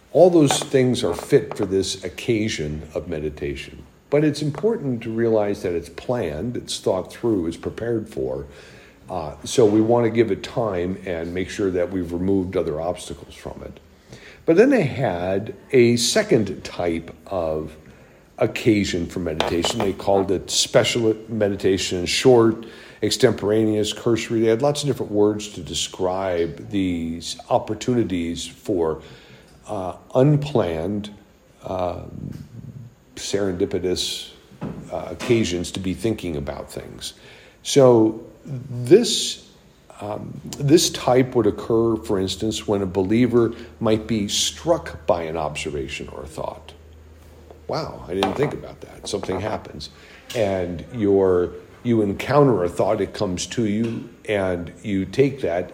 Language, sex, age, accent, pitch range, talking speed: English, male, 50-69, American, 85-115 Hz, 135 wpm